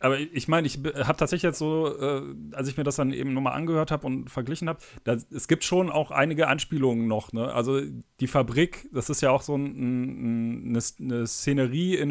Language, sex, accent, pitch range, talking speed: German, male, German, 130-160 Hz, 220 wpm